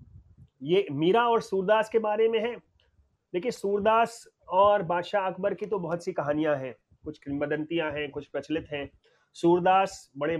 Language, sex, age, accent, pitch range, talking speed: Hindi, male, 30-49, native, 155-195 Hz, 155 wpm